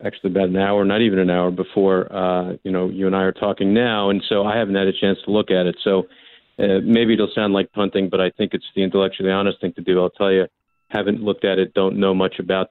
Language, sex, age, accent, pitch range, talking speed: English, male, 40-59, American, 95-115 Hz, 270 wpm